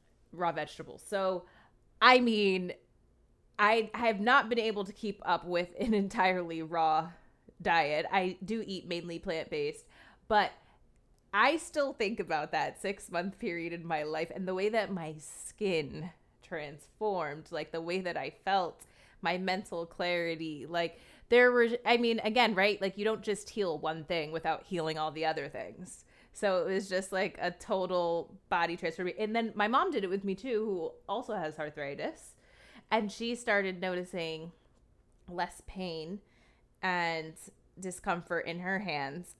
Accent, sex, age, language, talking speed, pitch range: American, female, 20-39, English, 160 wpm, 170-215 Hz